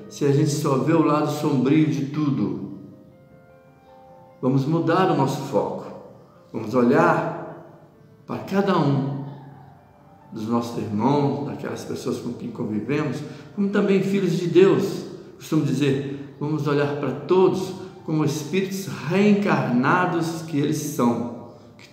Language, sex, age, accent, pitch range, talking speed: Portuguese, male, 60-79, Brazilian, 130-165 Hz, 125 wpm